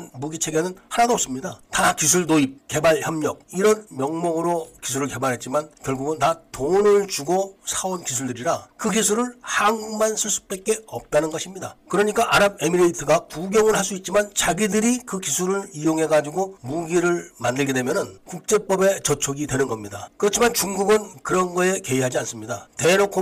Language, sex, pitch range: Korean, male, 150-205 Hz